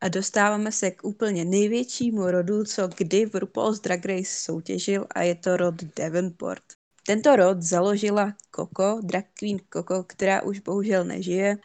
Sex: female